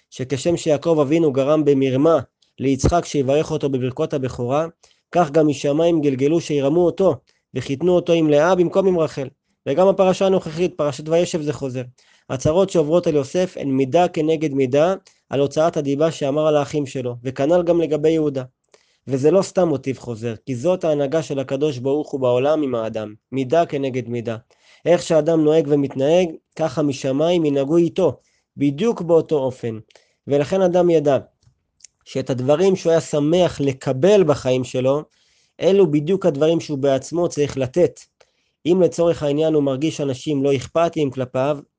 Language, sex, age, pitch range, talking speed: Hebrew, male, 20-39, 135-165 Hz, 150 wpm